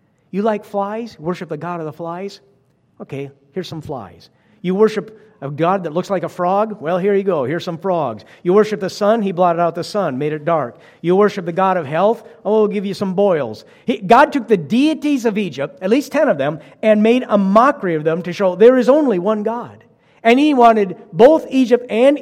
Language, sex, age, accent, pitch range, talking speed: English, male, 50-69, American, 145-220 Hz, 230 wpm